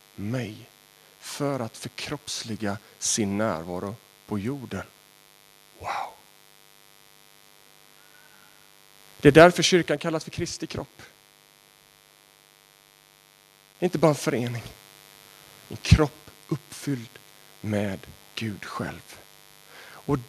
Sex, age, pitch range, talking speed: male, 40-59, 120-190 Hz, 85 wpm